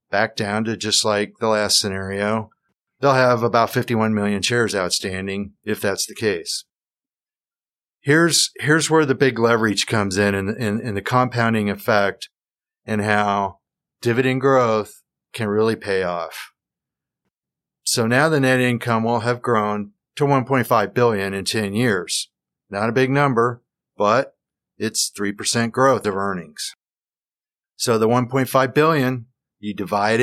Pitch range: 105-125 Hz